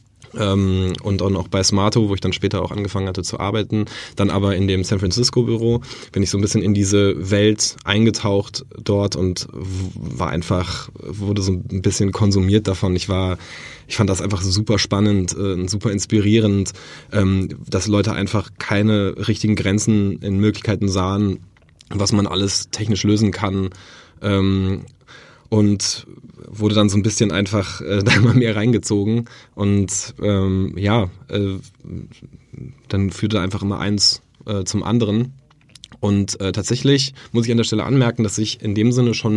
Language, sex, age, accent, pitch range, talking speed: German, male, 20-39, German, 100-115 Hz, 160 wpm